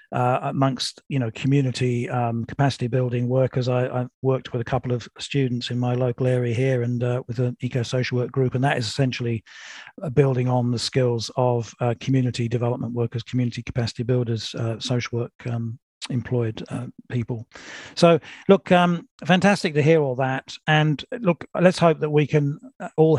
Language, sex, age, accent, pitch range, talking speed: English, male, 40-59, British, 125-140 Hz, 175 wpm